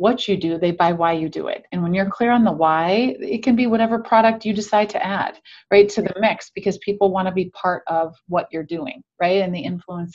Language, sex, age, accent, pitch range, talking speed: English, female, 30-49, American, 185-250 Hz, 255 wpm